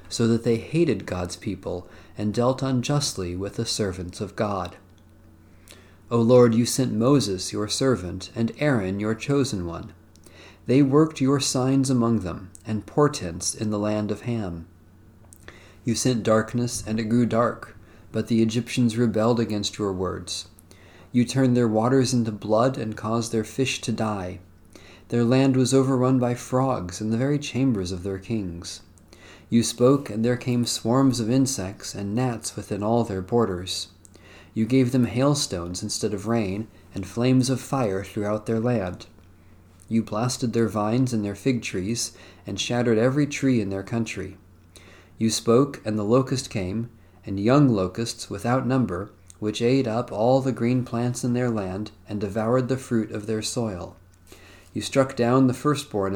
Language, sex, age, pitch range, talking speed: English, male, 40-59, 95-125 Hz, 165 wpm